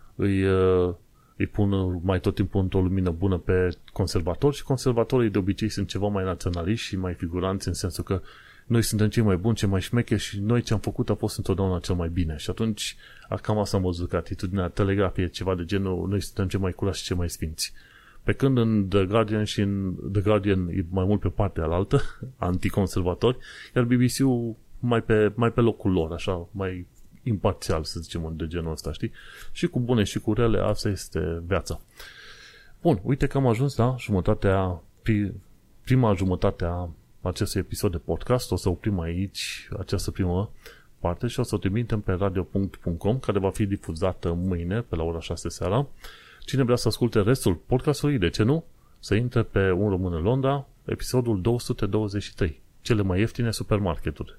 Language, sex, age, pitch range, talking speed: Romanian, male, 30-49, 90-115 Hz, 180 wpm